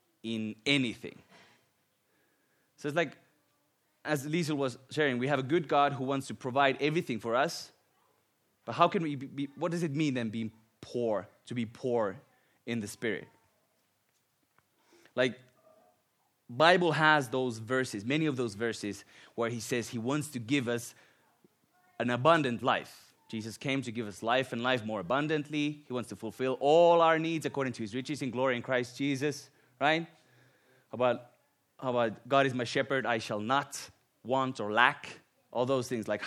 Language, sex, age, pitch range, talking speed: Finnish, male, 20-39, 115-145 Hz, 170 wpm